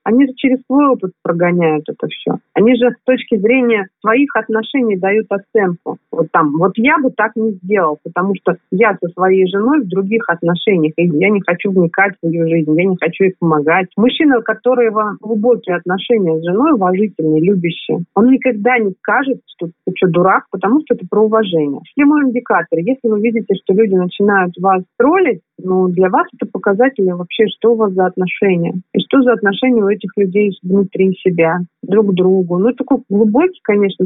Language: Russian